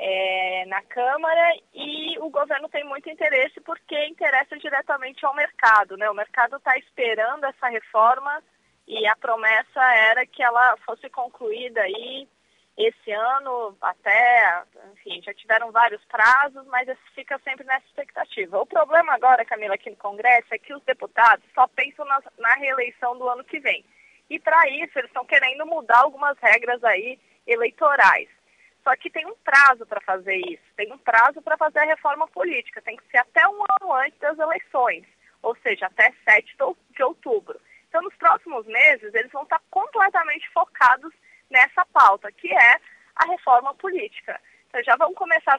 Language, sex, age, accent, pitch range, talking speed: Portuguese, female, 20-39, Brazilian, 230-320 Hz, 165 wpm